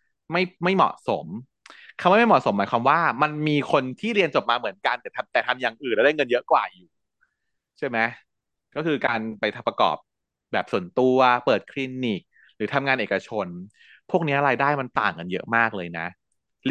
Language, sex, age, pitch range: Thai, male, 20-39, 115-155 Hz